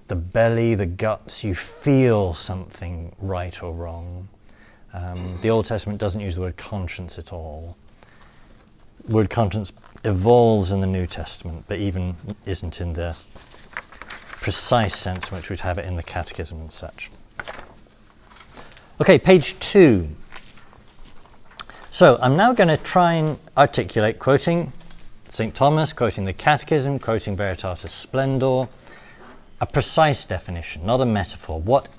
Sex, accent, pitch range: male, British, 90-130 Hz